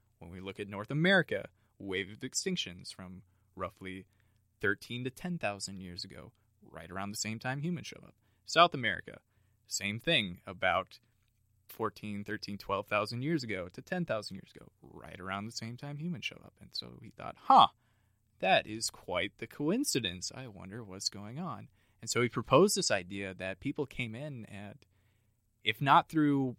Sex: male